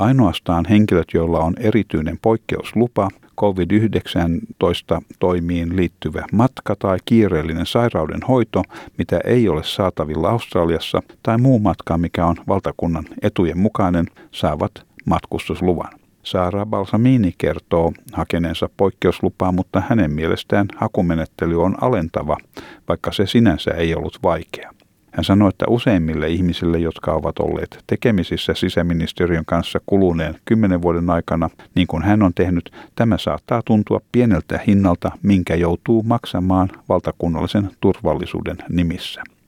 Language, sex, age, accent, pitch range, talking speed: Finnish, male, 50-69, native, 85-105 Hz, 115 wpm